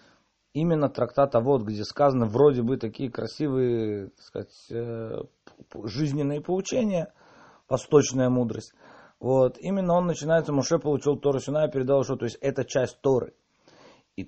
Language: Russian